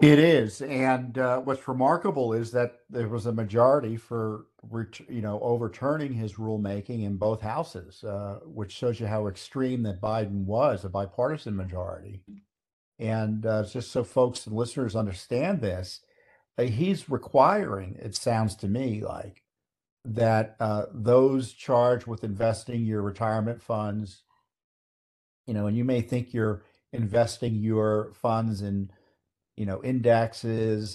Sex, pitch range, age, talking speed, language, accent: male, 105-120 Hz, 50-69, 140 wpm, English, American